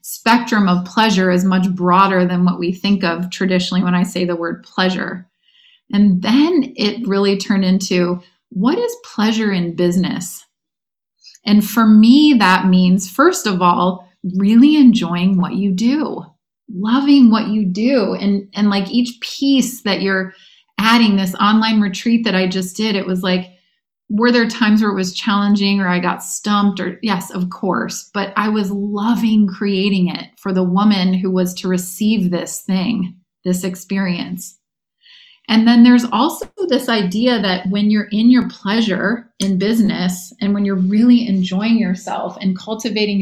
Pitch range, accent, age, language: 185-230 Hz, American, 30-49, English